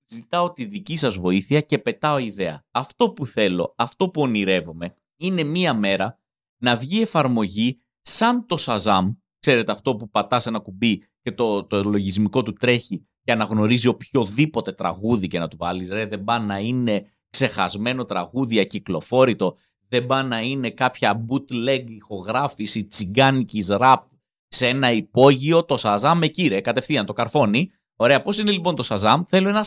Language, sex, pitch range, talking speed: Greek, male, 105-160 Hz, 160 wpm